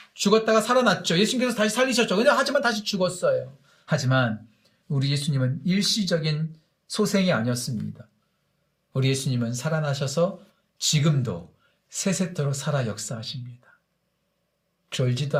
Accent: native